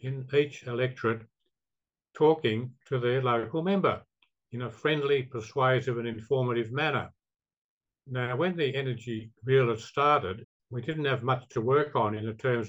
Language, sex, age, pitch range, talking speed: English, male, 60-79, 115-140 Hz, 150 wpm